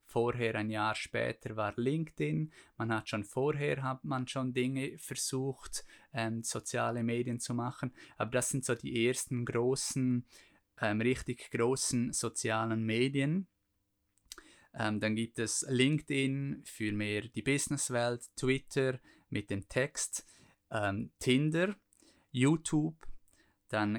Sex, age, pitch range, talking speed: male, 20-39, 110-135 Hz, 125 wpm